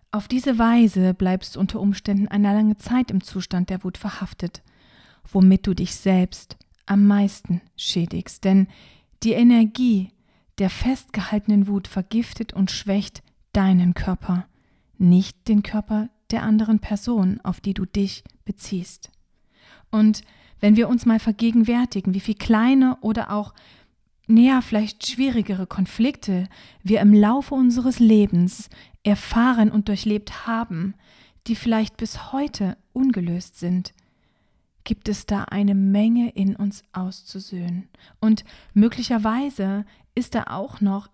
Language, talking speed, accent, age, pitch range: German, 130 wpm, German, 40-59, 190-225 Hz